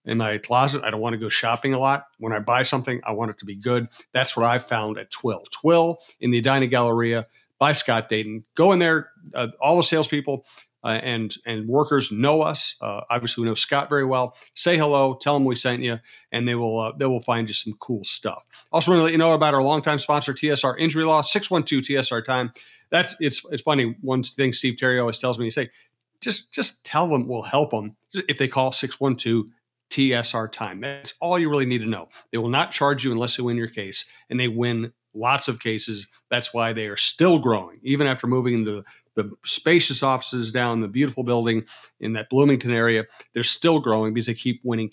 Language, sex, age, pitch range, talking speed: English, male, 40-59, 115-145 Hz, 230 wpm